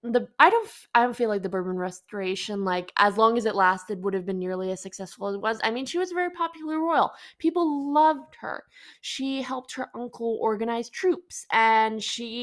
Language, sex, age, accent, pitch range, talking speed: English, female, 20-39, American, 200-275 Hz, 215 wpm